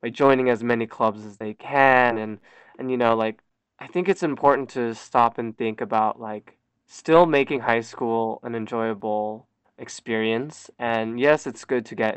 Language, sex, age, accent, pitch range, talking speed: English, male, 20-39, American, 110-125 Hz, 175 wpm